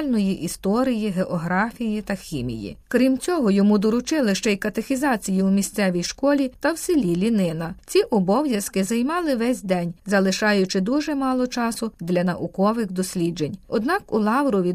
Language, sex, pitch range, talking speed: Ukrainian, female, 190-255 Hz, 135 wpm